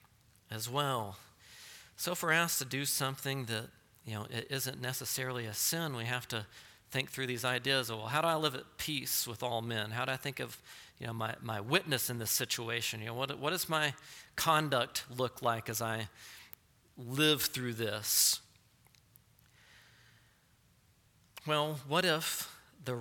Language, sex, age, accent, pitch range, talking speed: English, male, 40-59, American, 115-140 Hz, 170 wpm